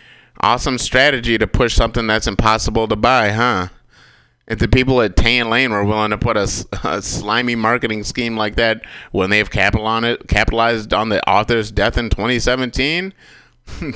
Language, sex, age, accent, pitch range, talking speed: English, male, 30-49, American, 95-120 Hz, 160 wpm